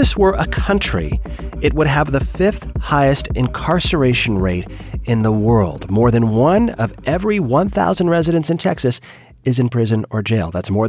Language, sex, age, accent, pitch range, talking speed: English, male, 30-49, American, 105-135 Hz, 165 wpm